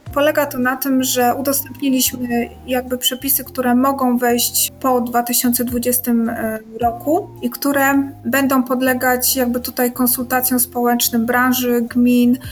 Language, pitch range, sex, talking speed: Polish, 240-255 Hz, female, 115 wpm